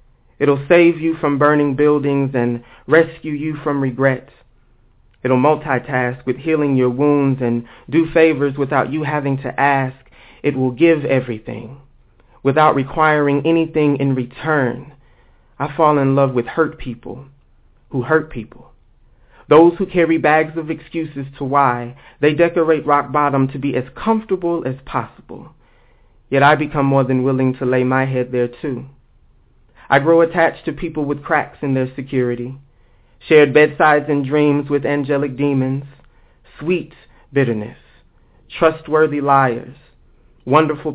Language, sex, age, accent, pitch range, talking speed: English, male, 30-49, American, 130-155 Hz, 140 wpm